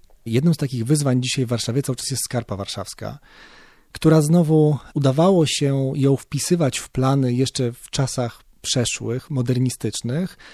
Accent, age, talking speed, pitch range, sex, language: native, 40-59, 125 wpm, 125-145 Hz, male, Polish